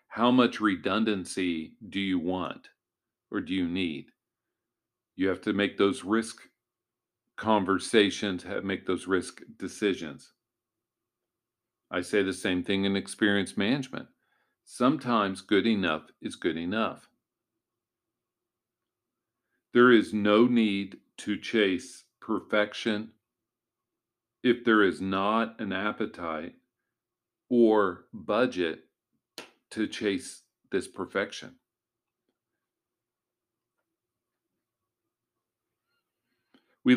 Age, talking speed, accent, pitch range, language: 50-69, 90 wpm, American, 95-120 Hz, English